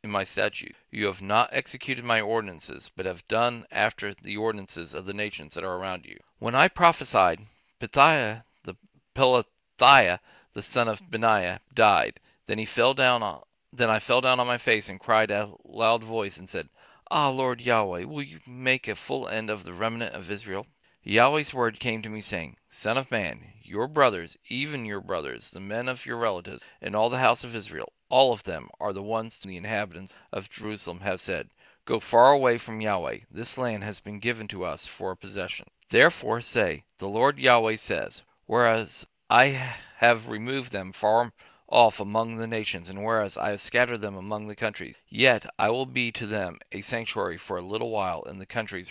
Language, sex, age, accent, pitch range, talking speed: English, male, 40-59, American, 100-120 Hz, 195 wpm